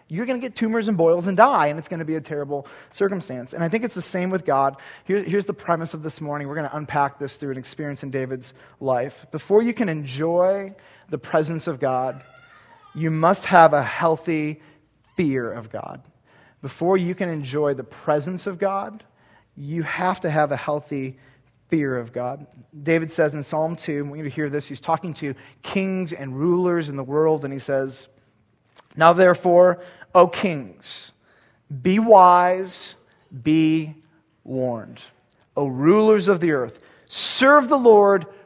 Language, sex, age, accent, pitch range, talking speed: English, male, 30-49, American, 140-185 Hz, 175 wpm